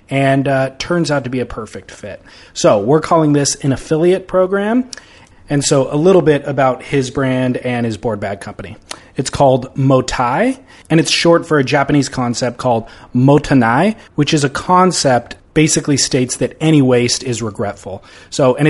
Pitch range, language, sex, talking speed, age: 115-150 Hz, English, male, 175 wpm, 30-49